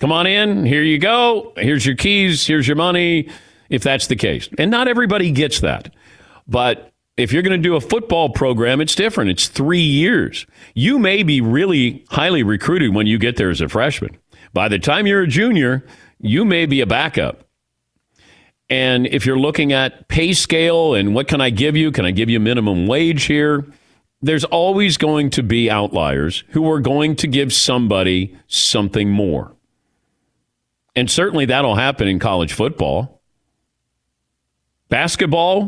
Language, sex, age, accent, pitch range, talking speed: English, male, 50-69, American, 115-160 Hz, 170 wpm